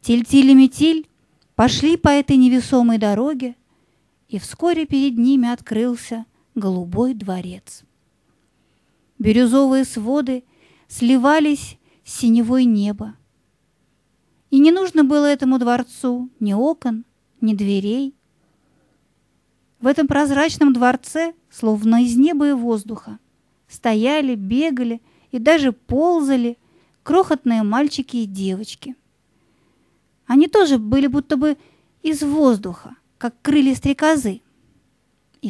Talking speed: 100 wpm